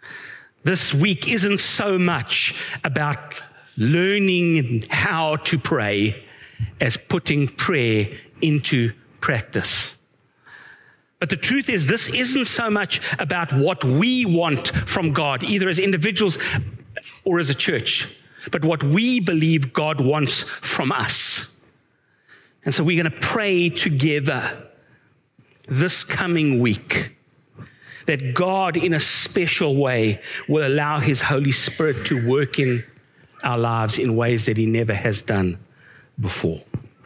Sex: male